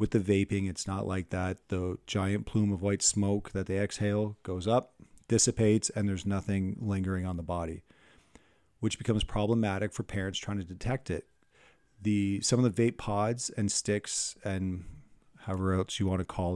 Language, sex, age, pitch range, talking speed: English, male, 40-59, 95-110 Hz, 180 wpm